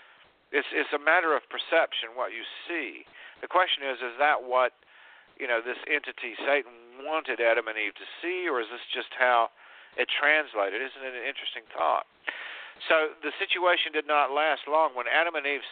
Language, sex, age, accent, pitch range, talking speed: English, male, 50-69, American, 150-200 Hz, 185 wpm